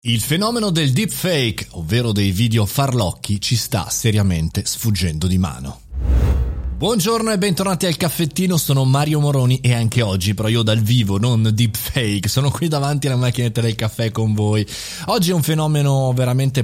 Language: Italian